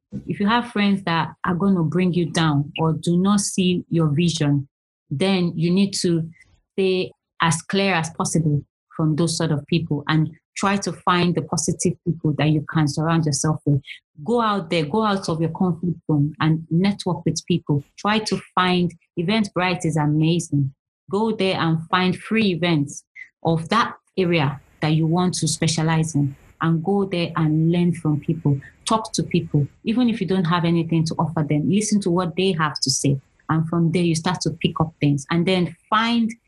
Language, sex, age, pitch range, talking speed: English, female, 30-49, 155-180 Hz, 190 wpm